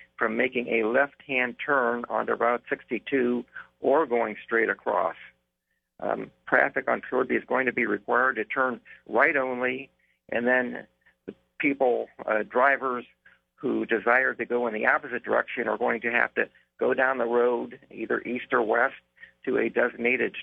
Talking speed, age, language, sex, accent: 160 wpm, 50-69, English, male, American